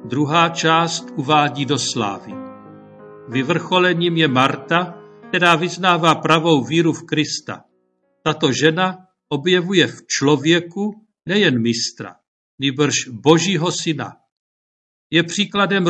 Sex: male